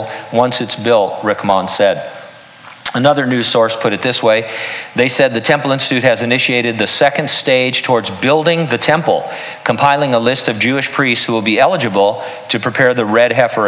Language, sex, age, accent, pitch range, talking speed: English, male, 50-69, American, 115-150 Hz, 180 wpm